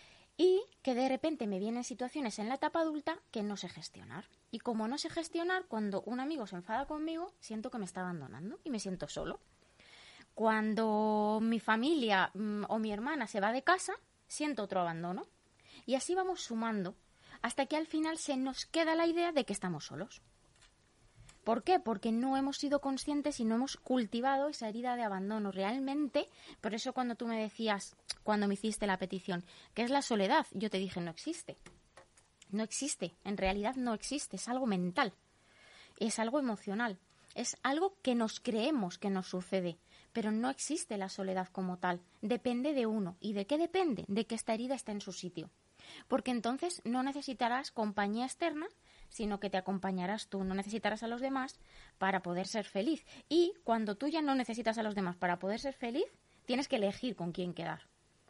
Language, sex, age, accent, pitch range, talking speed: Spanish, female, 20-39, Spanish, 195-275 Hz, 185 wpm